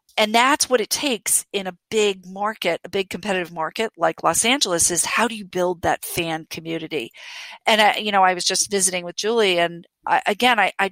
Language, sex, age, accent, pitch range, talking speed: English, female, 50-69, American, 175-215 Hz, 205 wpm